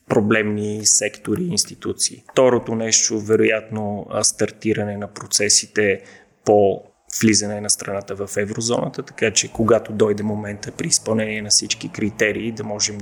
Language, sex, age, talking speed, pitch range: Bulgarian, male, 30-49, 130 wpm, 105-115 Hz